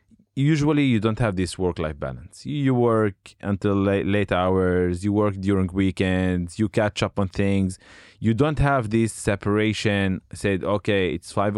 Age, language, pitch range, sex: 20-39, Hebrew, 85-105 Hz, male